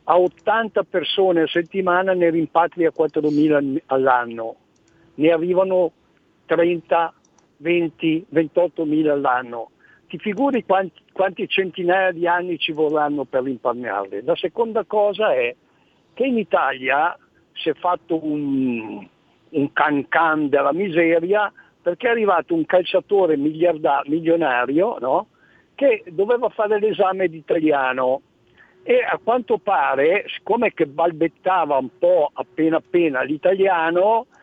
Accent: native